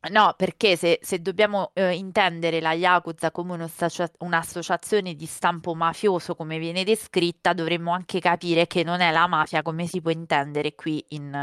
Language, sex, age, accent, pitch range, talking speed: Italian, female, 20-39, native, 165-210 Hz, 170 wpm